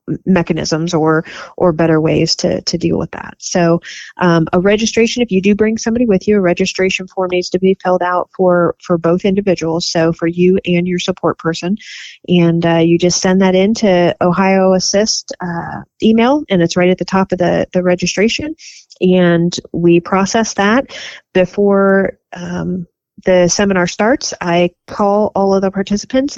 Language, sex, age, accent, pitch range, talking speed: English, female, 30-49, American, 170-195 Hz, 175 wpm